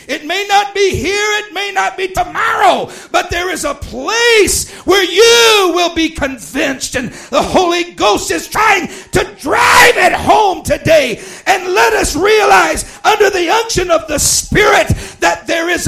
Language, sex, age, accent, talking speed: English, male, 60-79, American, 165 wpm